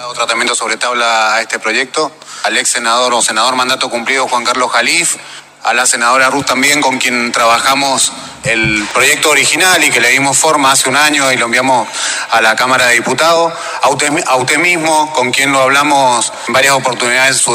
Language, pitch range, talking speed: Spanish, 125-155 Hz, 190 wpm